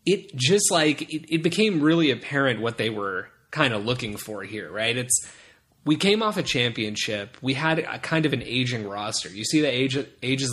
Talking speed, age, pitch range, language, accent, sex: 205 wpm, 20-39, 115-145 Hz, English, American, male